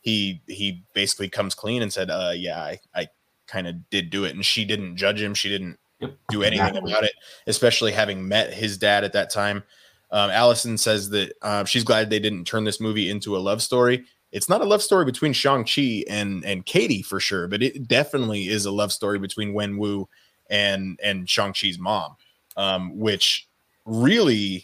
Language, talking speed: English, 195 wpm